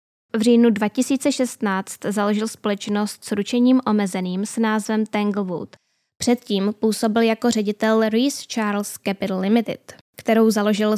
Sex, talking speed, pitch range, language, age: female, 115 wpm, 205-245 Hz, Czech, 10-29